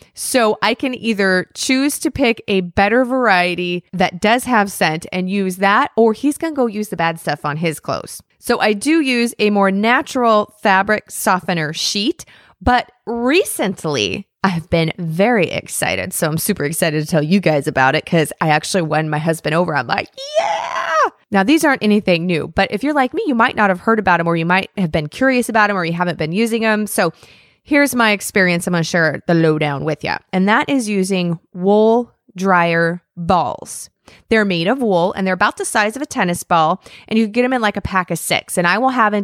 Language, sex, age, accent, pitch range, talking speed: English, female, 20-39, American, 175-230 Hz, 220 wpm